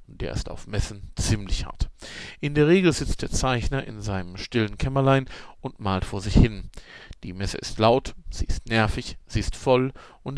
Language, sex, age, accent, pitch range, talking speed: German, male, 40-59, German, 100-125 Hz, 185 wpm